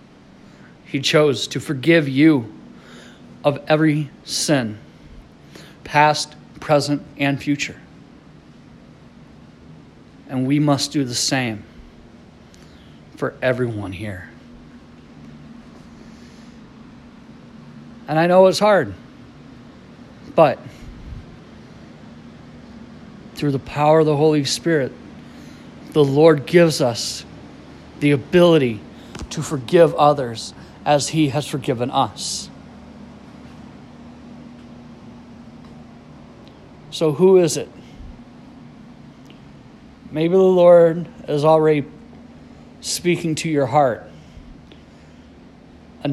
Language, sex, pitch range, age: English, male, 120-155 Hz, 40-59